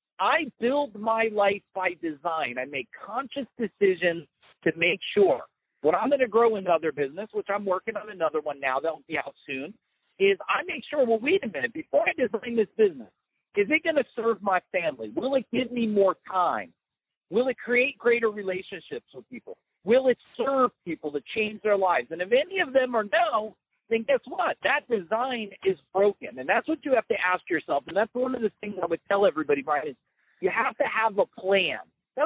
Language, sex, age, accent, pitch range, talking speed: English, male, 50-69, American, 195-270 Hz, 210 wpm